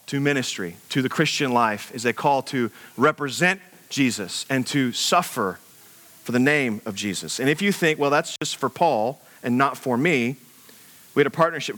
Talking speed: 190 wpm